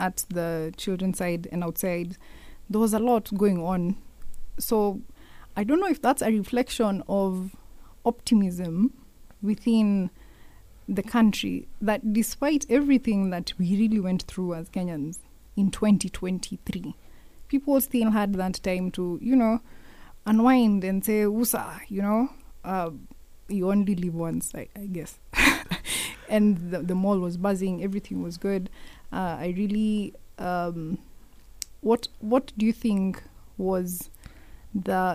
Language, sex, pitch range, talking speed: English, female, 180-215 Hz, 135 wpm